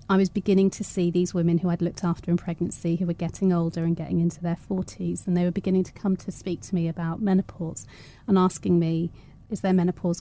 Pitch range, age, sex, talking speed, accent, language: 170-195 Hz, 30-49, female, 235 wpm, British, English